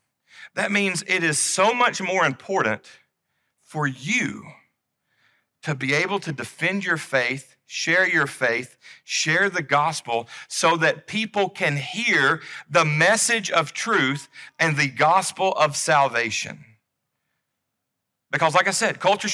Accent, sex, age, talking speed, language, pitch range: American, male, 40-59, 130 wpm, English, 145-200 Hz